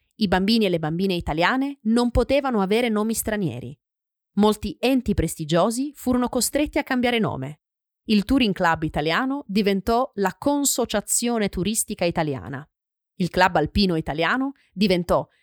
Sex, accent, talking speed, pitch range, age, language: female, native, 130 wpm, 175-245 Hz, 30-49, Italian